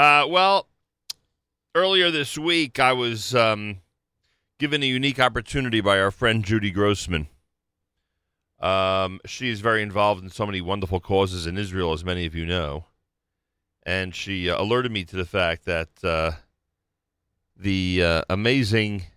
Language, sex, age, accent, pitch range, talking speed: English, male, 40-59, American, 90-110 Hz, 145 wpm